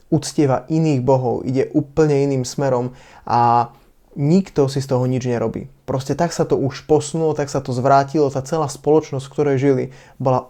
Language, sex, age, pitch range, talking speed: Slovak, male, 20-39, 125-145 Hz, 175 wpm